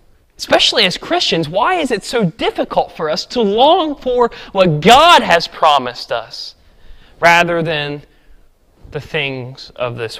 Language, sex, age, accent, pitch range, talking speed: English, male, 20-39, American, 145-205 Hz, 140 wpm